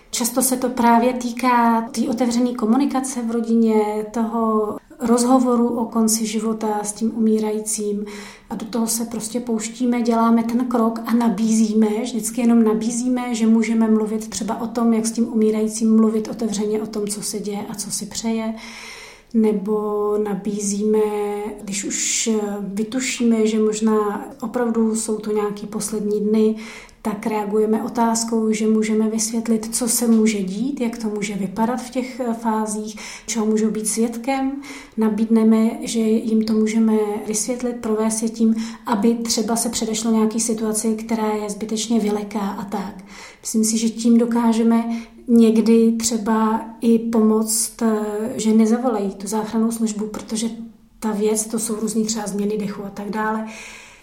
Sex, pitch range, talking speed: female, 215-230 Hz, 150 wpm